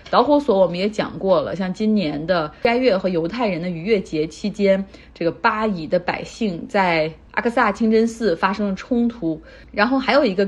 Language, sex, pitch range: Chinese, female, 170-220 Hz